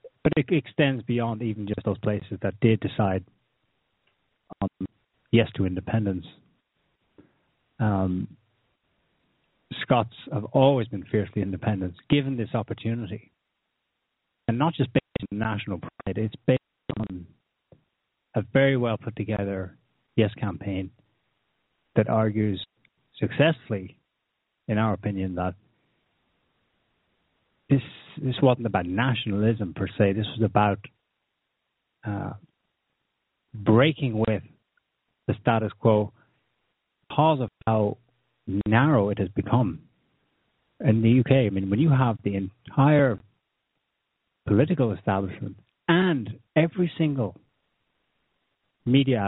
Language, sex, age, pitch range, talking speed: English, male, 30-49, 100-130 Hz, 105 wpm